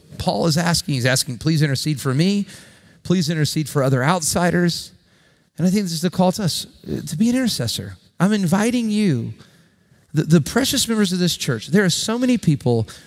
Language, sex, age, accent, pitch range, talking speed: English, male, 40-59, American, 150-225 Hz, 195 wpm